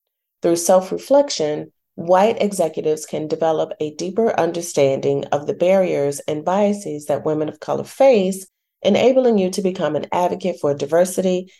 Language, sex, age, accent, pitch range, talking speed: English, female, 40-59, American, 150-195 Hz, 140 wpm